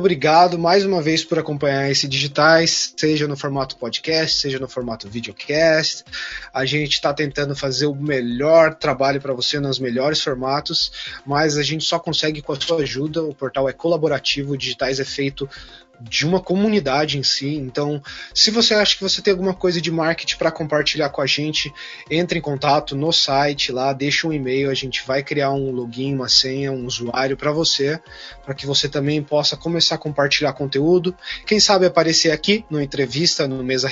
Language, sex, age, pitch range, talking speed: Portuguese, male, 20-39, 135-165 Hz, 185 wpm